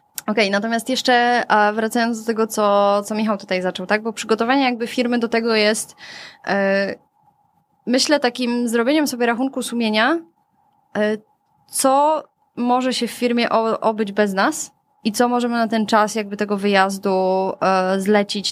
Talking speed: 140 wpm